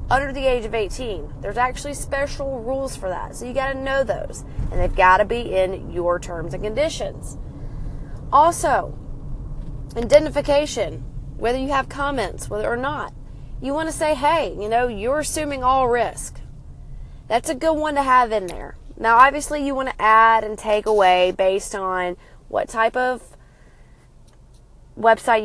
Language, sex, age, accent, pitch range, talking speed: English, female, 30-49, American, 195-275 Hz, 155 wpm